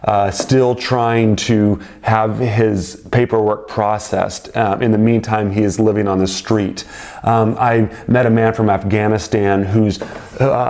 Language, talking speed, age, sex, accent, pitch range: English, 150 wpm, 30-49, male, American, 105-125 Hz